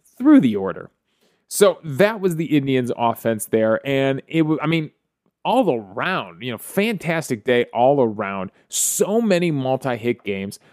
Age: 20-39